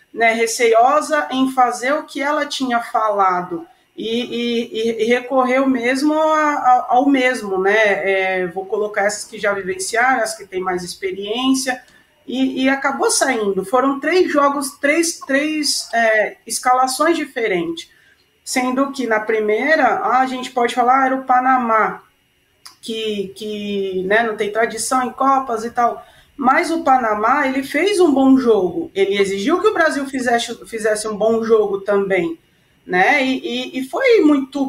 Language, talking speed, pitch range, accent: Portuguese, 145 wpm, 215-290 Hz, Brazilian